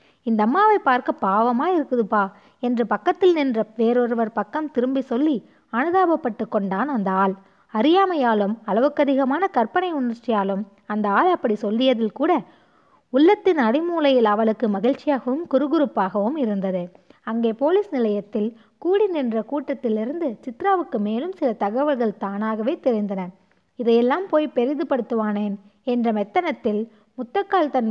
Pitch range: 215-295 Hz